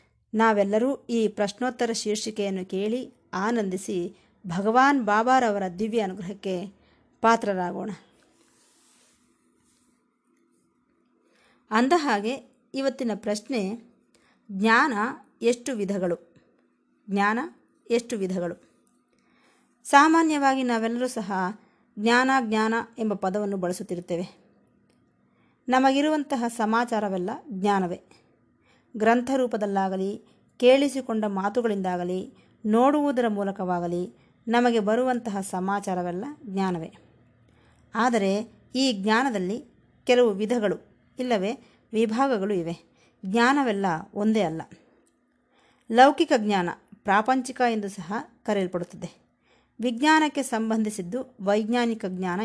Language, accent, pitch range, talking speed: Kannada, native, 195-245 Hz, 70 wpm